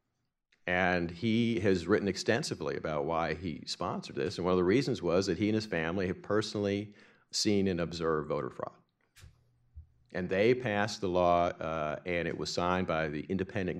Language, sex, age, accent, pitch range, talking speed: English, male, 50-69, American, 90-105 Hz, 180 wpm